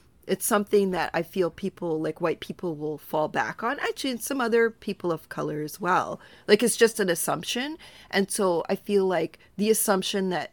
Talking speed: 200 wpm